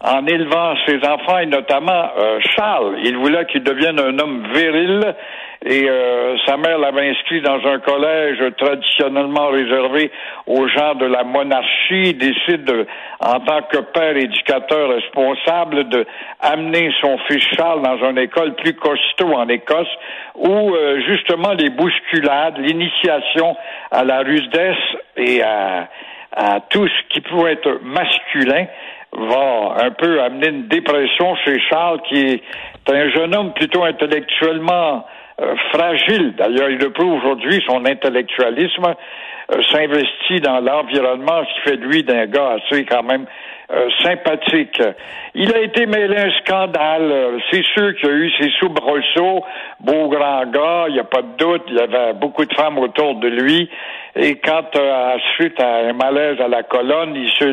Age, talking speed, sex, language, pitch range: 60-79, 160 wpm, male, French, 135-170 Hz